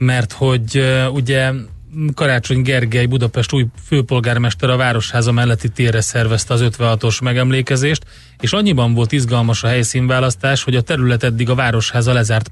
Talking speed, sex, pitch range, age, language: 140 wpm, male, 115-130 Hz, 30-49, Hungarian